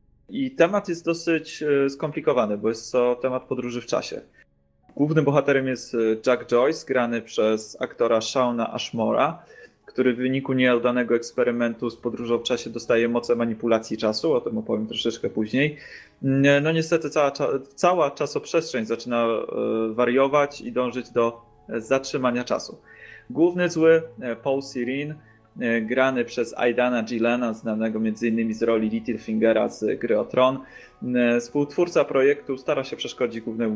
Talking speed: 130 wpm